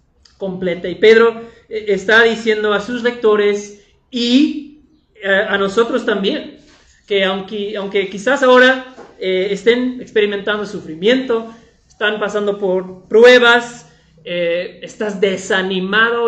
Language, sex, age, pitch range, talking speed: Spanish, male, 30-49, 195-225 Hz, 105 wpm